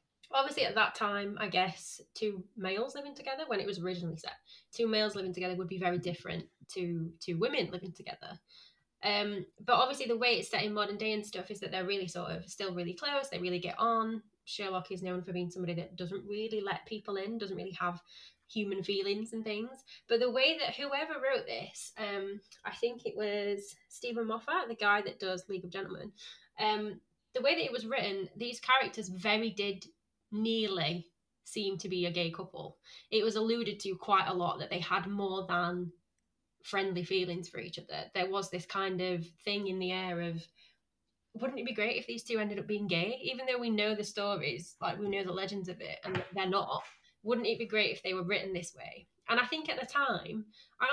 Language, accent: English, British